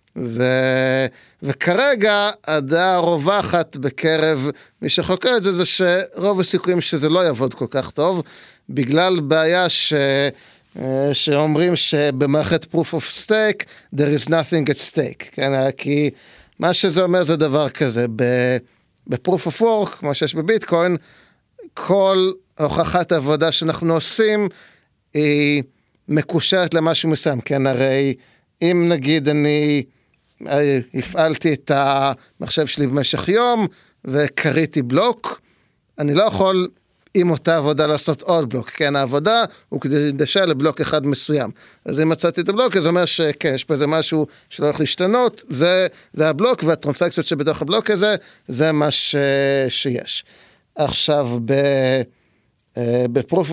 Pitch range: 140-175 Hz